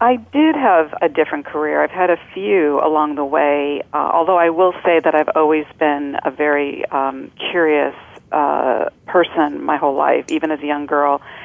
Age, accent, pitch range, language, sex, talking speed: 50-69, American, 145-160 Hz, English, female, 190 wpm